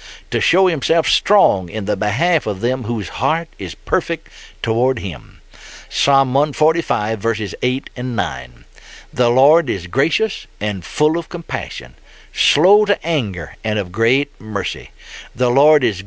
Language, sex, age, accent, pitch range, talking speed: English, male, 60-79, American, 105-150 Hz, 155 wpm